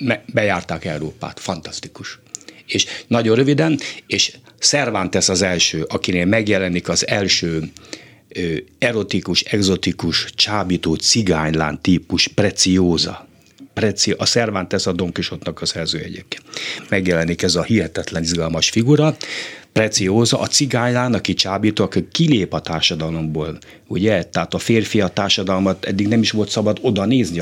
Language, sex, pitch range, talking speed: Hungarian, male, 90-115 Hz, 125 wpm